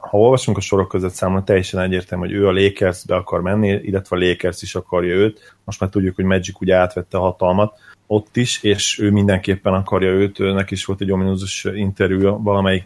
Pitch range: 95-105 Hz